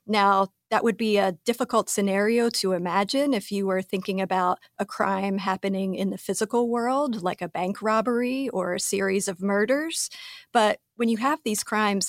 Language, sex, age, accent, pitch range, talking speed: English, female, 40-59, American, 195-230 Hz, 180 wpm